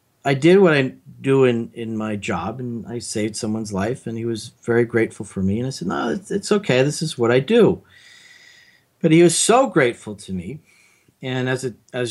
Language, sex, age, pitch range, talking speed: English, male, 40-59, 115-140 Hz, 220 wpm